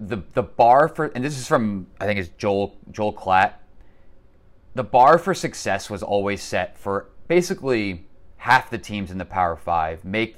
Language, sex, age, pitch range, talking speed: English, male, 30-49, 90-115 Hz, 180 wpm